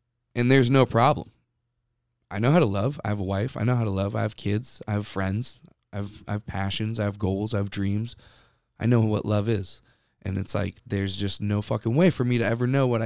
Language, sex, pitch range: English, male, 105-125 Hz